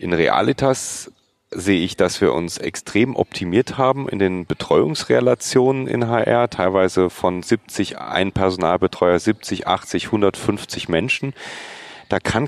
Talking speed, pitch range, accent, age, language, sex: 125 wpm, 95-115 Hz, German, 30-49, German, male